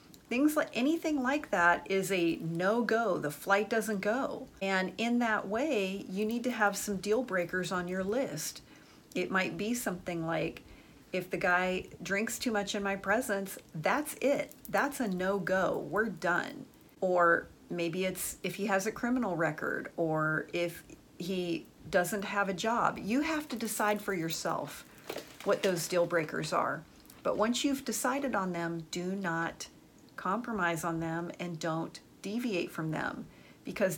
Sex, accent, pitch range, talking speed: female, American, 175-220 Hz, 165 wpm